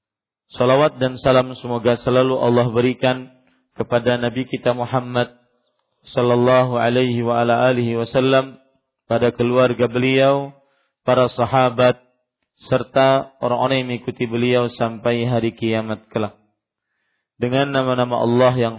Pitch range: 120-130 Hz